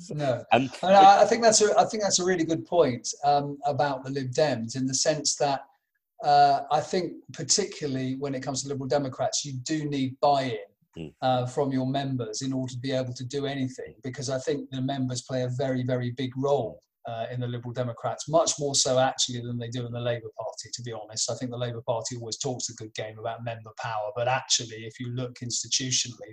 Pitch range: 125-150 Hz